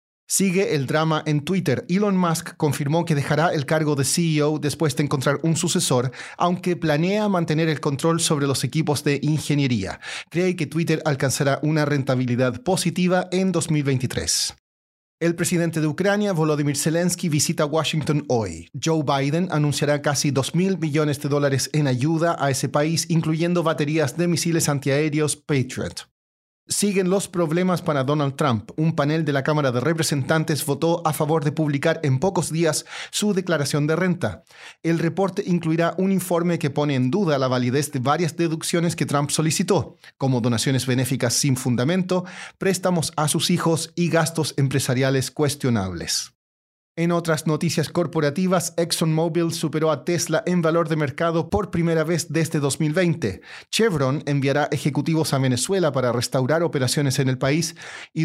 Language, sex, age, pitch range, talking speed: Spanish, male, 30-49, 140-170 Hz, 155 wpm